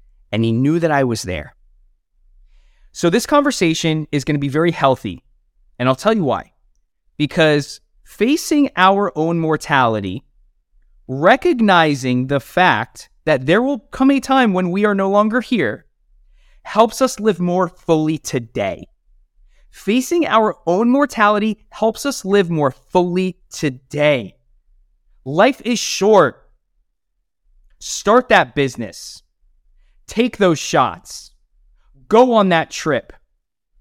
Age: 30-49